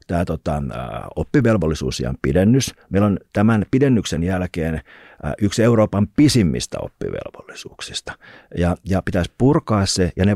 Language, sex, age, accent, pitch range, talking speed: Finnish, male, 50-69, native, 80-110 Hz, 120 wpm